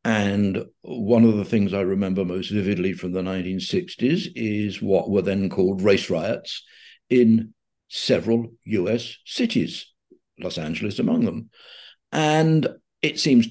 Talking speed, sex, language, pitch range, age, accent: 135 wpm, male, English, 105-125 Hz, 60-79, British